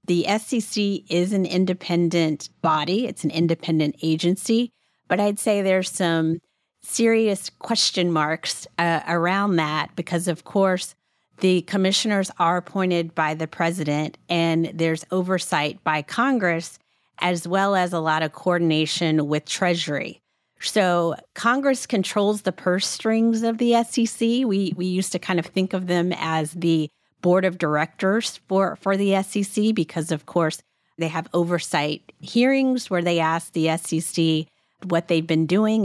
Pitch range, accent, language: 165-195 Hz, American, English